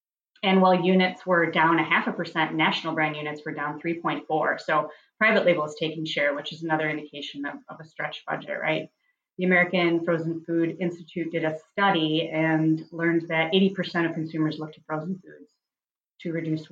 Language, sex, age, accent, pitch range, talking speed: English, female, 30-49, American, 155-180 Hz, 185 wpm